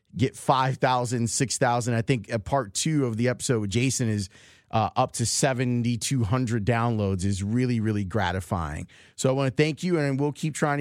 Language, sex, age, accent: English, male, 30-49, American